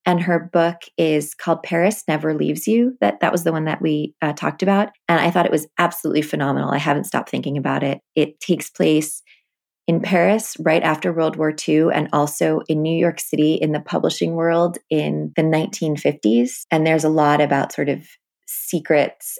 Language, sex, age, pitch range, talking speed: English, female, 20-39, 150-170 Hz, 195 wpm